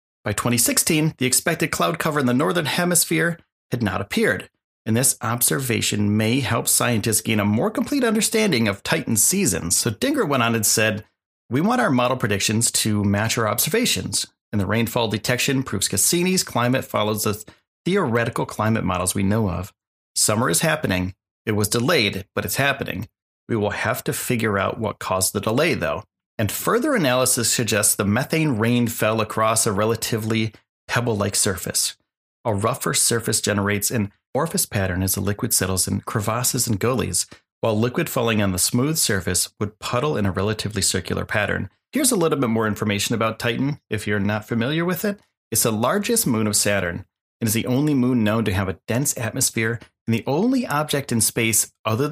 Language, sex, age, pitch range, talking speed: English, male, 30-49, 100-130 Hz, 180 wpm